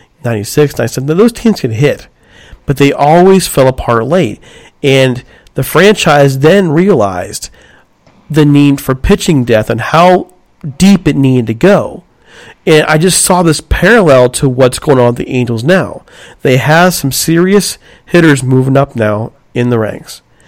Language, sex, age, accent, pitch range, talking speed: English, male, 40-59, American, 125-170 Hz, 160 wpm